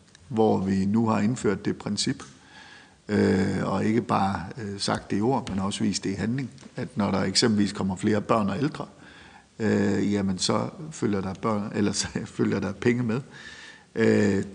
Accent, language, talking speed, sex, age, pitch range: native, Danish, 165 wpm, male, 50-69, 100-120 Hz